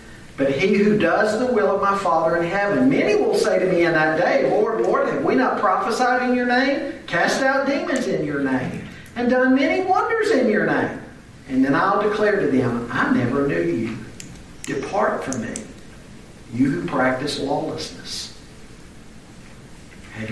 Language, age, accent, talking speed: English, 50-69, American, 175 wpm